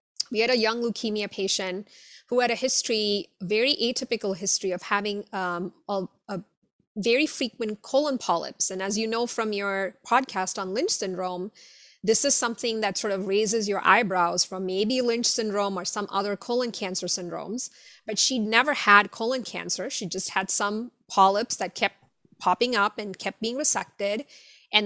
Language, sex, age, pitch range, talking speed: English, female, 20-39, 190-230 Hz, 170 wpm